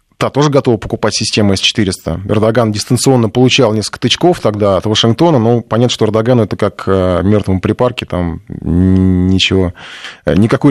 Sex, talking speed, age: male, 140 wpm, 20-39